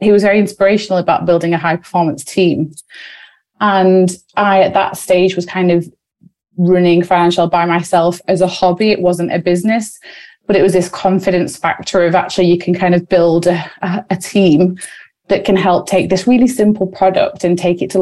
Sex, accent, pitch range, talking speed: female, British, 175-200 Hz, 185 wpm